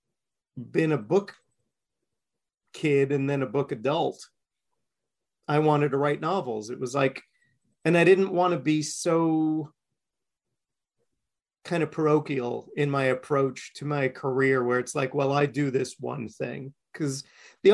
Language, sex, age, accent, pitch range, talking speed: English, male, 40-59, American, 135-160 Hz, 150 wpm